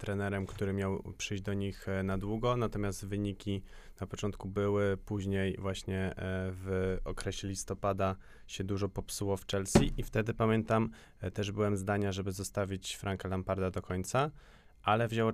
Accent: native